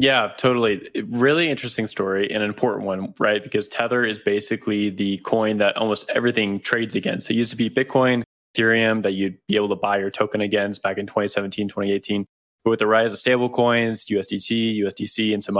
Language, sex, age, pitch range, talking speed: English, male, 20-39, 100-115 Hz, 190 wpm